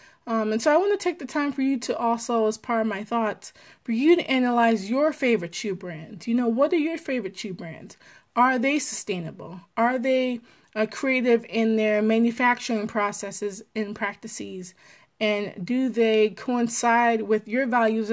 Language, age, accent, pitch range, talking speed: English, 20-39, American, 205-240 Hz, 180 wpm